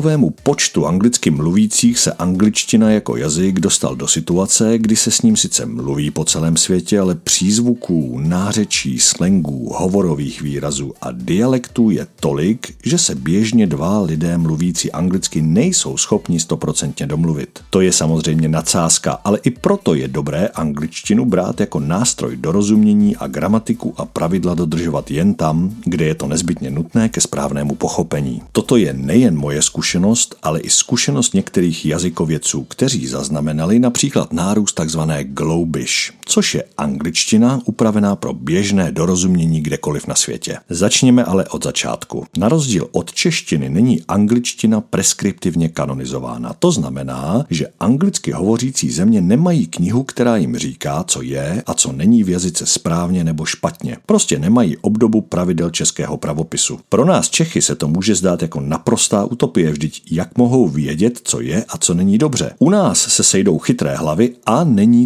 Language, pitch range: Czech, 80-120 Hz